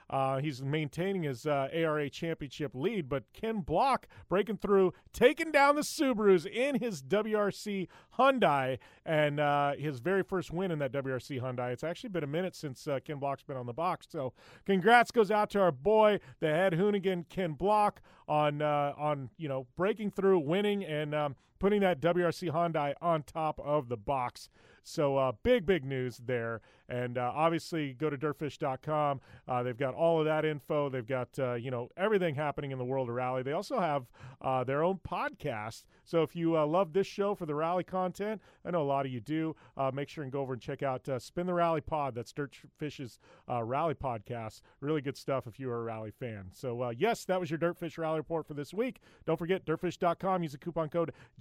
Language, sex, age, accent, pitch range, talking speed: English, male, 30-49, American, 135-185 Hz, 205 wpm